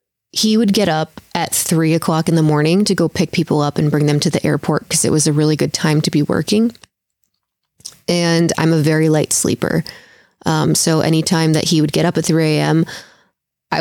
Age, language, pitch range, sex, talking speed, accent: 20-39, English, 155-180 Hz, female, 215 wpm, American